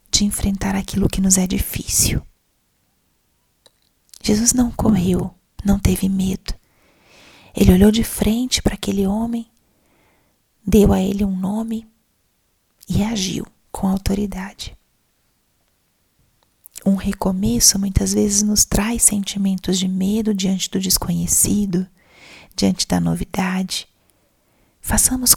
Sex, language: female, Portuguese